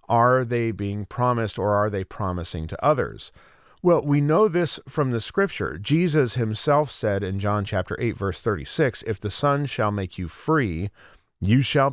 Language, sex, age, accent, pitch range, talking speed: English, male, 40-59, American, 100-125 Hz, 175 wpm